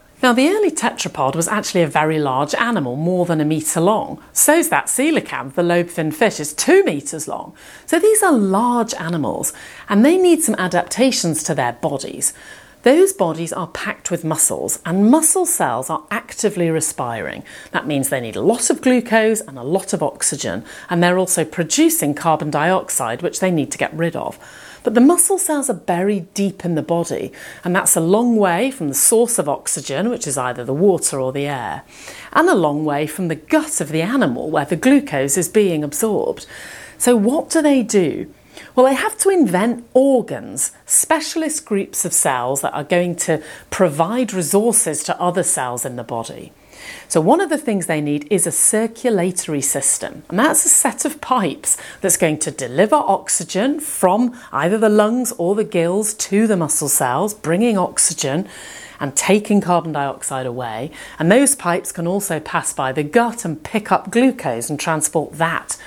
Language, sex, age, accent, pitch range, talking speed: English, female, 40-59, British, 155-240 Hz, 185 wpm